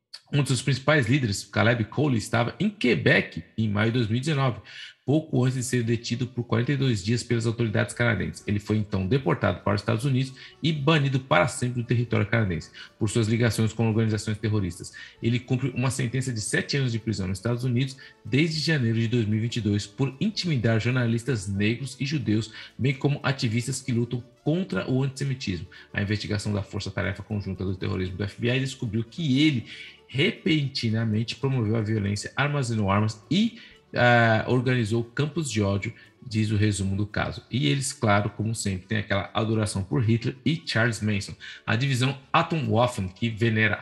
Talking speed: 165 wpm